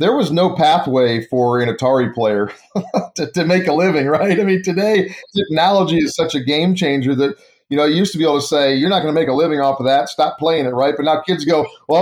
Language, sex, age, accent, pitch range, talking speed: English, male, 40-59, American, 125-160 Hz, 260 wpm